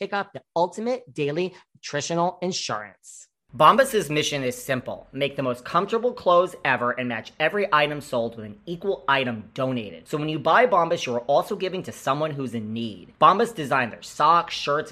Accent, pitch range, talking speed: American, 120-165 Hz, 180 wpm